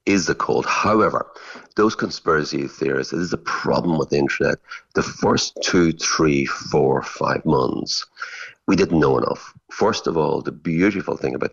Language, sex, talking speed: English, male, 165 wpm